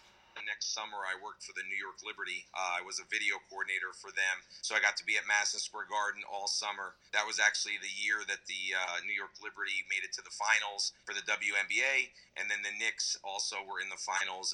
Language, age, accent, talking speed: English, 40-59, American, 230 wpm